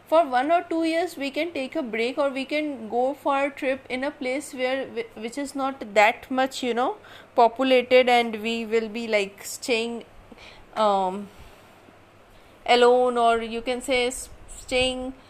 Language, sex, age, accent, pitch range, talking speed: Hindi, female, 30-49, native, 190-255 Hz, 165 wpm